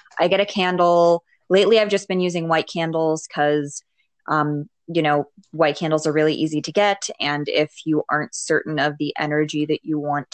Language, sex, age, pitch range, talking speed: English, female, 20-39, 150-170 Hz, 190 wpm